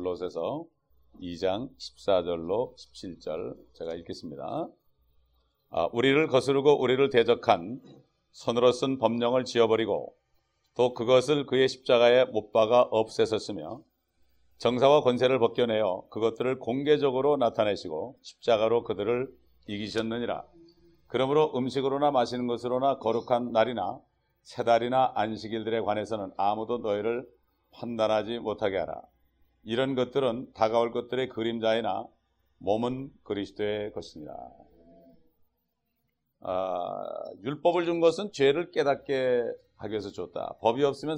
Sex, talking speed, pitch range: male, 95 wpm, 110-140 Hz